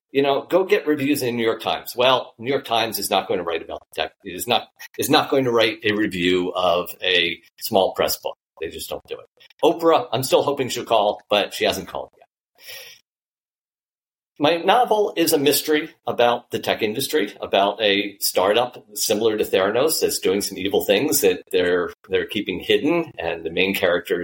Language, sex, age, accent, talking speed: English, male, 40-59, American, 200 wpm